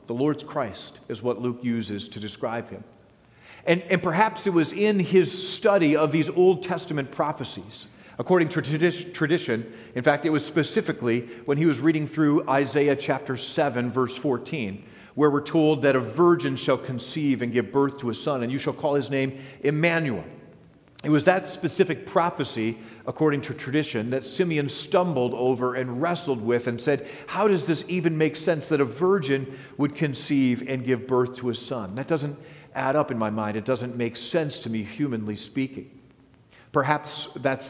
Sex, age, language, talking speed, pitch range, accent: male, 40-59, English, 180 wpm, 120-155 Hz, American